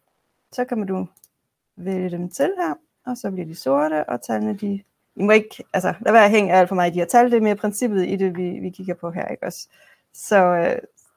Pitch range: 180-235 Hz